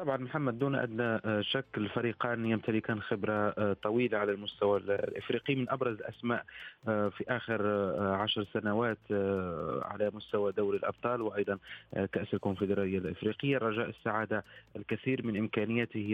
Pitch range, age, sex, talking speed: 100-115 Hz, 30-49, male, 120 wpm